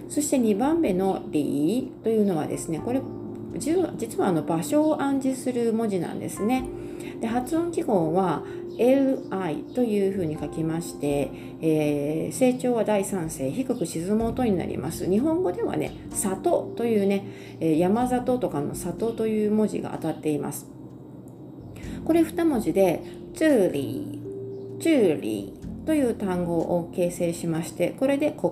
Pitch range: 170-275 Hz